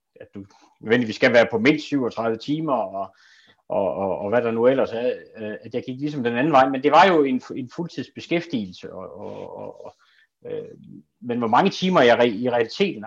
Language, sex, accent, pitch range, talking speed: Danish, male, native, 120-170 Hz, 200 wpm